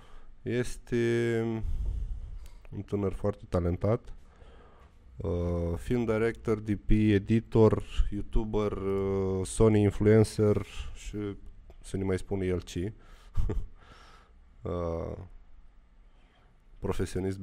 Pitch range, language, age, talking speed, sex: 85-105 Hz, Romanian, 20-39, 70 wpm, male